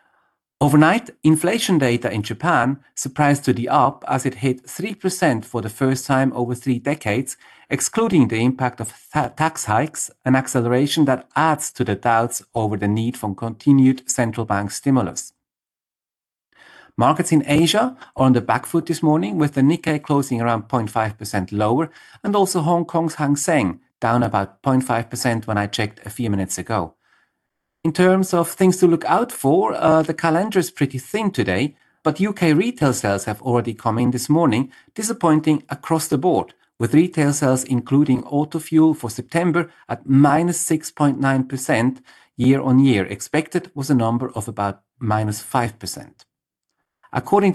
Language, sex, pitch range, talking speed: English, male, 120-160 Hz, 160 wpm